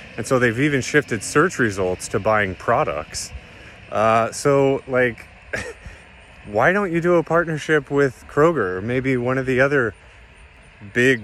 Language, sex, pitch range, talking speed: English, male, 95-130 Hz, 150 wpm